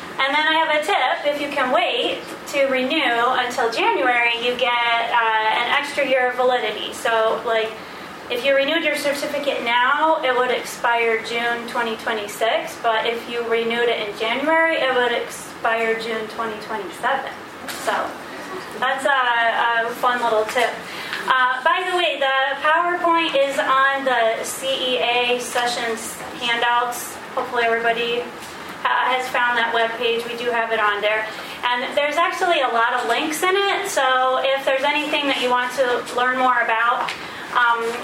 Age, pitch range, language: 30-49, 235-280 Hz, English